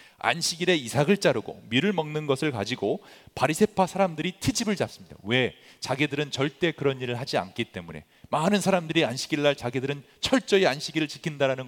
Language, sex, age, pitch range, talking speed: English, male, 40-59, 145-200 Hz, 140 wpm